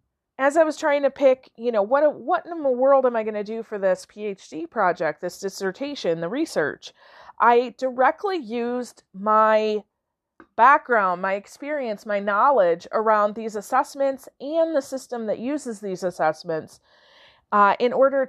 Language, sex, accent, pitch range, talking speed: English, female, American, 205-285 Hz, 160 wpm